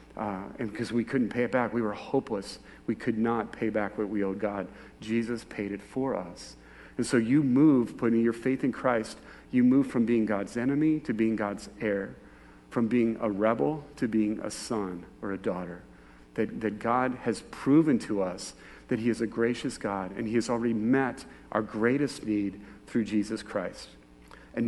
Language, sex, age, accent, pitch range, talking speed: English, male, 40-59, American, 105-125 Hz, 195 wpm